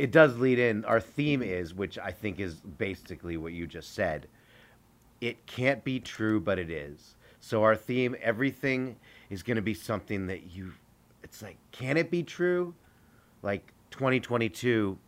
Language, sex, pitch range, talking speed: English, male, 100-125 Hz, 165 wpm